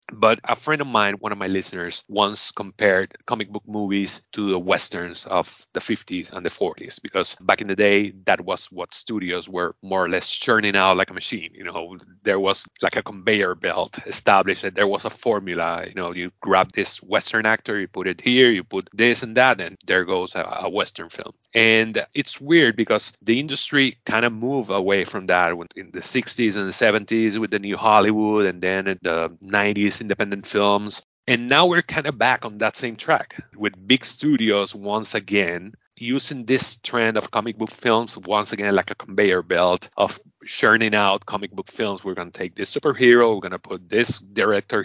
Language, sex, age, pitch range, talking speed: English, male, 30-49, 95-115 Hz, 205 wpm